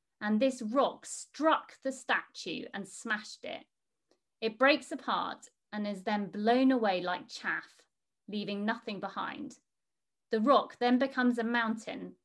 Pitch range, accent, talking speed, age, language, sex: 190-255 Hz, British, 135 wpm, 30-49, English, female